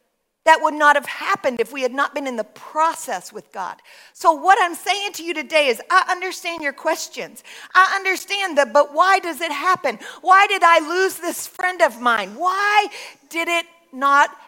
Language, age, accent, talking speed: English, 50-69, American, 195 wpm